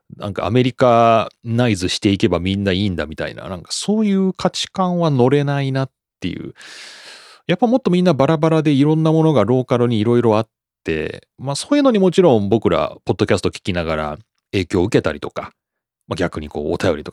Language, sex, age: Japanese, male, 30-49